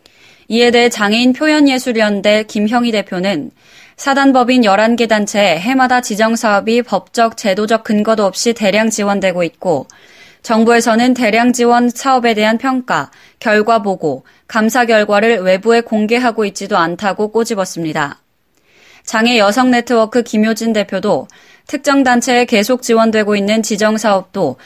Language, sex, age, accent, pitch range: Korean, female, 20-39, native, 205-240 Hz